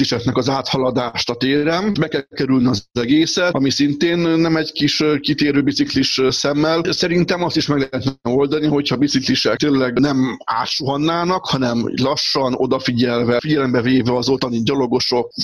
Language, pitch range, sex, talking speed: Hungarian, 130-150 Hz, male, 150 wpm